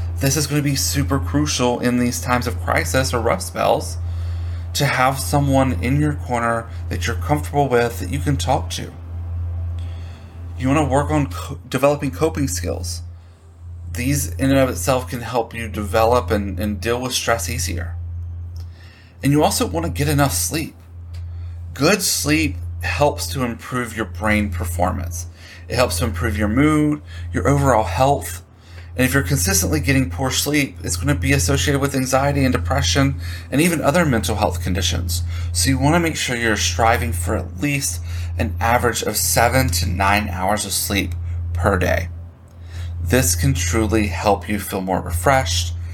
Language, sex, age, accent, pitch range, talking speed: English, male, 30-49, American, 85-110 Hz, 170 wpm